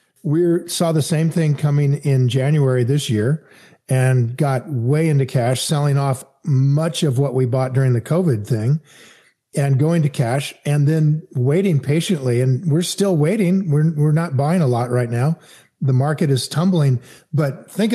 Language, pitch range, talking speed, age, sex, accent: English, 135-160 Hz, 175 wpm, 50-69, male, American